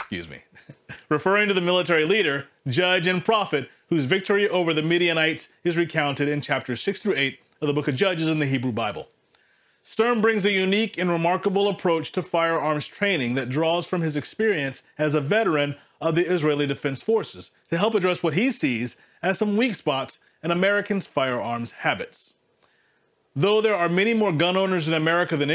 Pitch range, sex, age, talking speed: 140-185 Hz, male, 30-49, 185 wpm